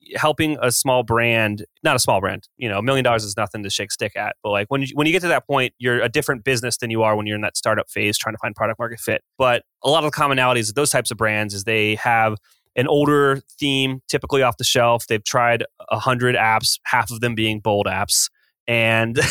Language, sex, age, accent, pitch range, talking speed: English, male, 20-39, American, 115-140 Hz, 250 wpm